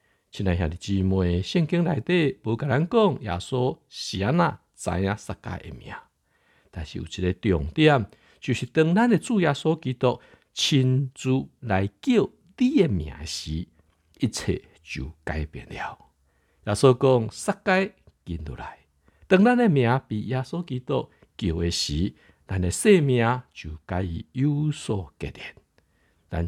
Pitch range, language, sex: 90-145 Hz, Chinese, male